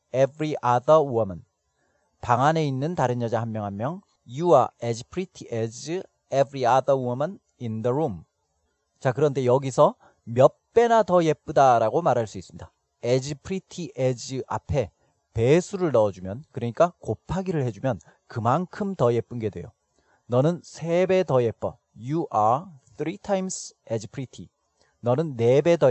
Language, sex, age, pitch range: Korean, male, 30-49, 115-155 Hz